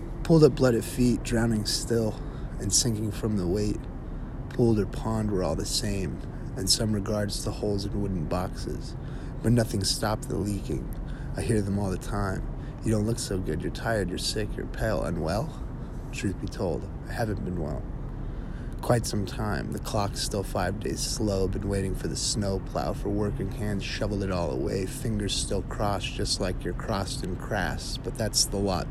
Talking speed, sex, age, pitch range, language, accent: 190 wpm, male, 30-49, 95-115 Hz, English, American